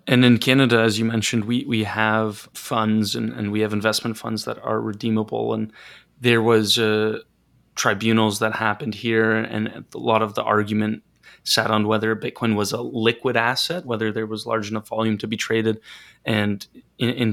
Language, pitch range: English, 110-120 Hz